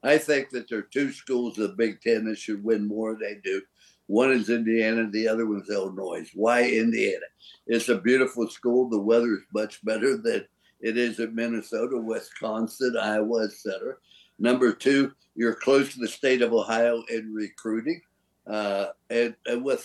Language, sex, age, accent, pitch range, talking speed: English, male, 60-79, American, 115-140 Hz, 180 wpm